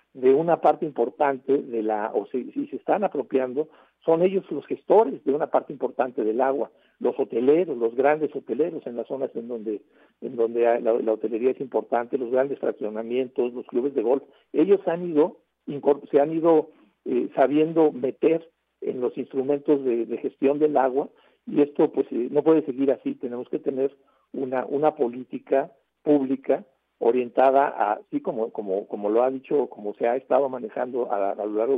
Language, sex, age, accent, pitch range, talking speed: Spanish, male, 50-69, Mexican, 120-145 Hz, 180 wpm